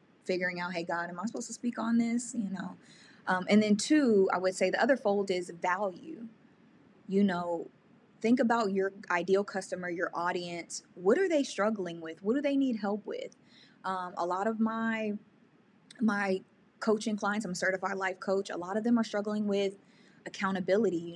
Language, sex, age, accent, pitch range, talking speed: English, female, 20-39, American, 180-220 Hz, 190 wpm